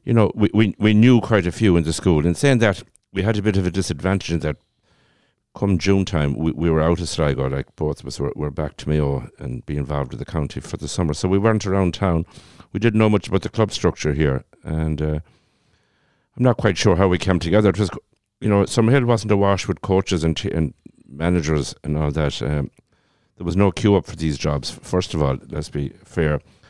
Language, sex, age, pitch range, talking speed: English, male, 60-79, 75-100 Hz, 240 wpm